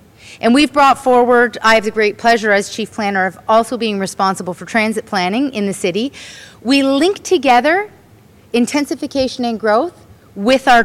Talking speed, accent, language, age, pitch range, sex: 165 wpm, American, English, 30-49, 205-260 Hz, female